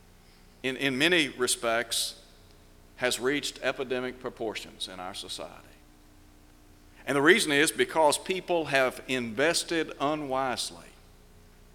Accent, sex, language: American, male, English